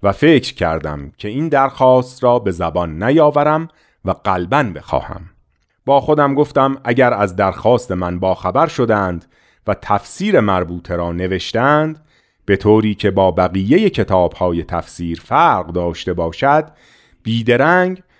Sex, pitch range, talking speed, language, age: male, 90-130 Hz, 125 wpm, Persian, 40-59